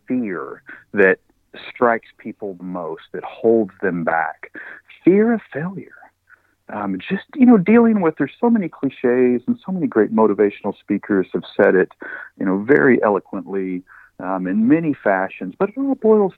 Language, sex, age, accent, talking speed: English, male, 50-69, American, 160 wpm